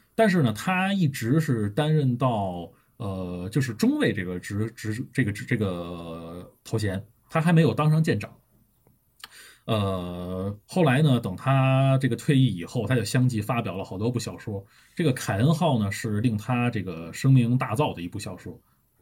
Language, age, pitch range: Chinese, 20-39, 105-135 Hz